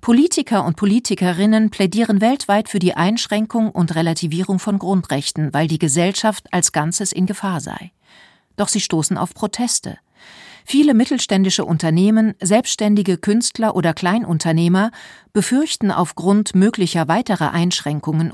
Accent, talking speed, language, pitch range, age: German, 120 wpm, German, 170-215 Hz, 40-59